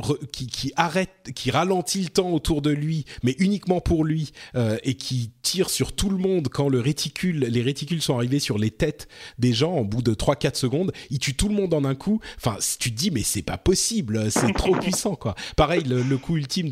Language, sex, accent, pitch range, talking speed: French, male, French, 115-160 Hz, 230 wpm